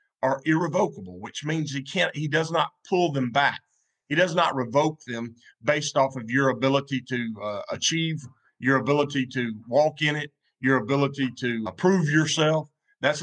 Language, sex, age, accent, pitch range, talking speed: English, male, 50-69, American, 130-155 Hz, 170 wpm